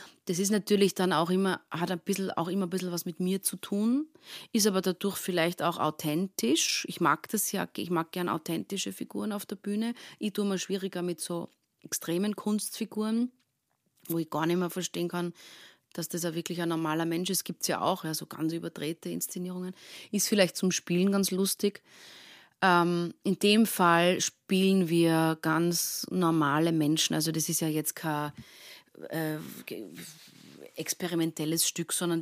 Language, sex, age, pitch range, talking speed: German, female, 30-49, 160-190 Hz, 170 wpm